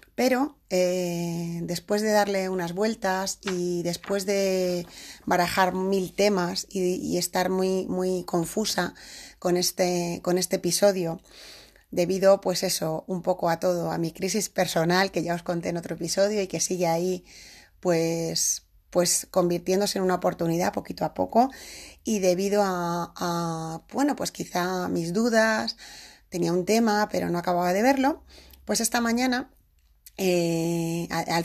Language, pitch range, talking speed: Spanish, 170-200 Hz, 145 wpm